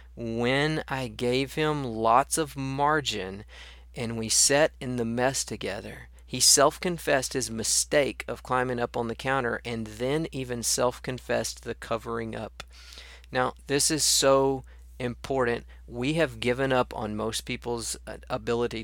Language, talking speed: English, 140 wpm